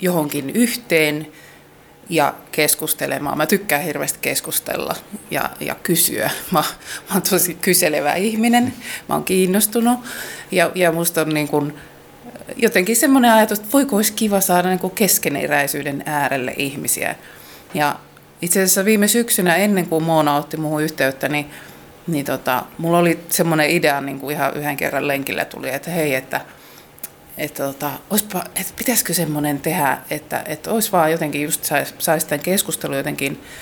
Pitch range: 145-195 Hz